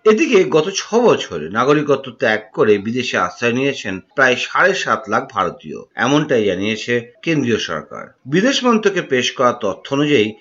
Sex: male